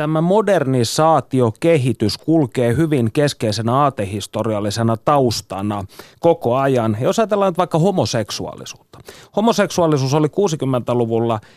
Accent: native